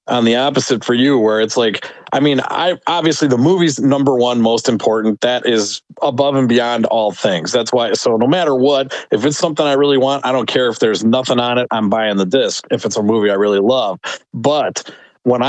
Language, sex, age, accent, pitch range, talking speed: English, male, 40-59, American, 115-145 Hz, 225 wpm